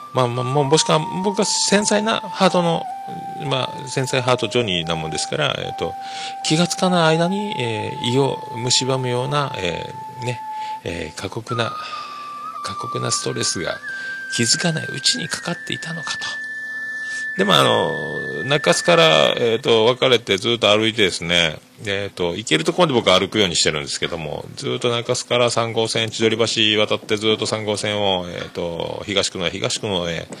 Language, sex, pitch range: Japanese, male, 105-175 Hz